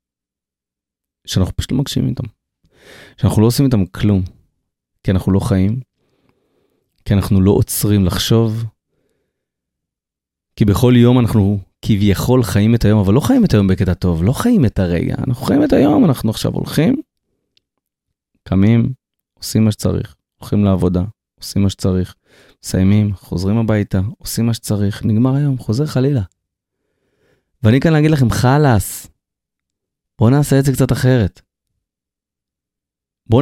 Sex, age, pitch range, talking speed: male, 30-49, 95-125 Hz, 135 wpm